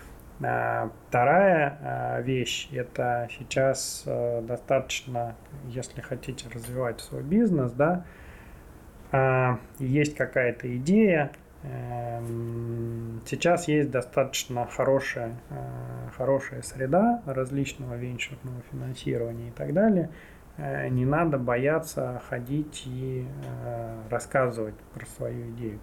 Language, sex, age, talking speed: Russian, male, 20-39, 80 wpm